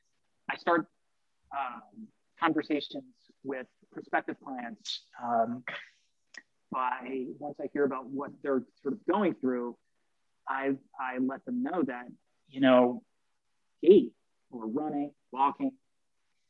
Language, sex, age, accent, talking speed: English, male, 30-49, American, 115 wpm